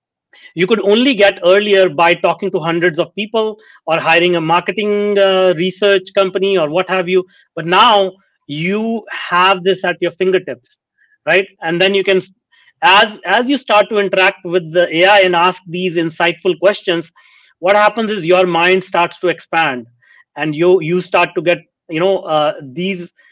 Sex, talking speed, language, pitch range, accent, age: male, 170 wpm, English, 175-205 Hz, Indian, 30-49